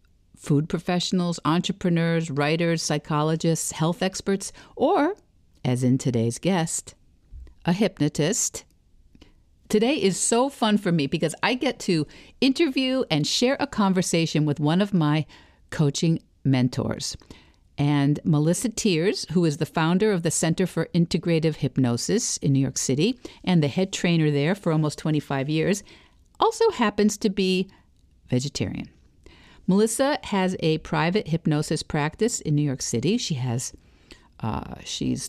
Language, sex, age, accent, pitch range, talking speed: English, female, 50-69, American, 145-200 Hz, 135 wpm